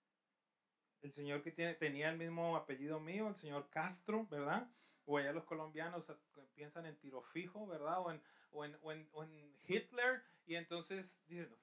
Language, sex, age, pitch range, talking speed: English, male, 30-49, 165-240 Hz, 145 wpm